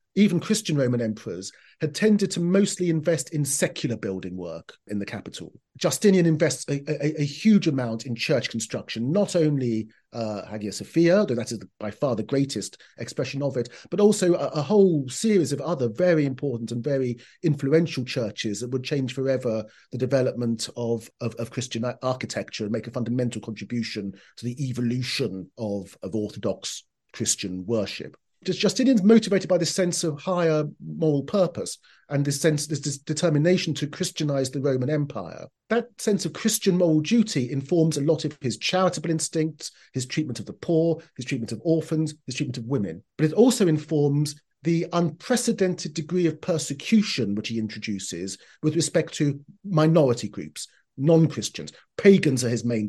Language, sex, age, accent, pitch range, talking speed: English, male, 40-59, British, 120-165 Hz, 170 wpm